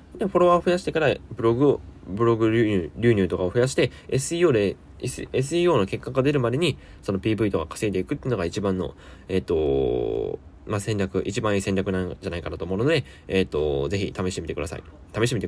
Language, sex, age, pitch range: Japanese, male, 20-39, 90-120 Hz